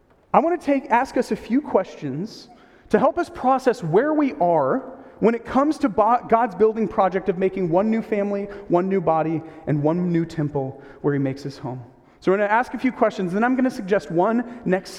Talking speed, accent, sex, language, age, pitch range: 225 wpm, American, male, English, 30-49, 145-215 Hz